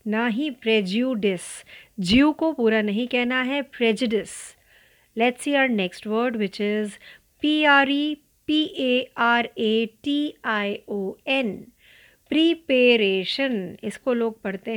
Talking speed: 70 wpm